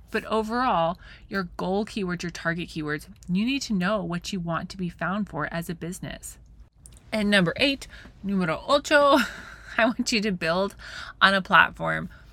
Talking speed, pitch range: 170 wpm, 160-215 Hz